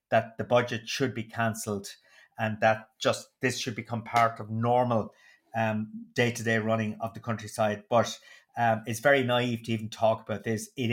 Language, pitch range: English, 110-125 Hz